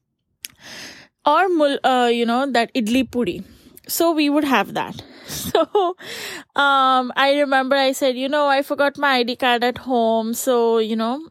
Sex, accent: female, Indian